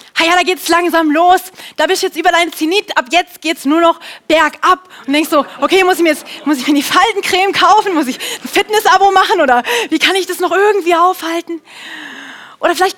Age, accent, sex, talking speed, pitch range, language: 20-39, German, female, 230 wpm, 265-350 Hz, German